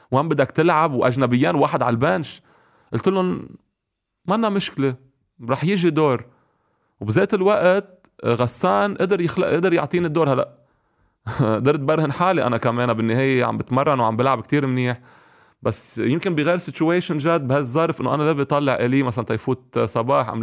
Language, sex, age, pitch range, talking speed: Arabic, male, 30-49, 115-155 Hz, 145 wpm